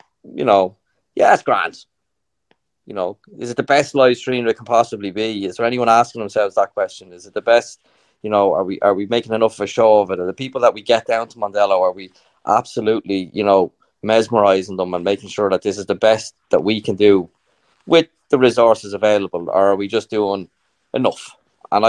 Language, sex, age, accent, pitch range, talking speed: English, male, 20-39, Irish, 95-115 Hz, 220 wpm